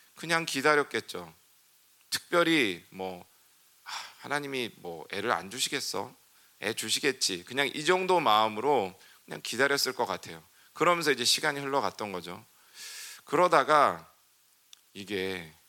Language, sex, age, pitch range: Korean, male, 40-59, 90-145 Hz